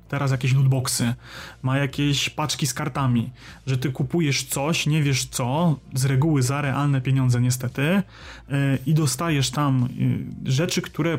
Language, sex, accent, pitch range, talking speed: Polish, male, native, 130-145 Hz, 140 wpm